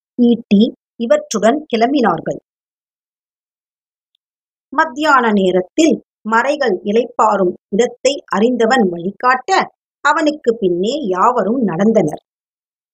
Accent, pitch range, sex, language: native, 200-300 Hz, male, Tamil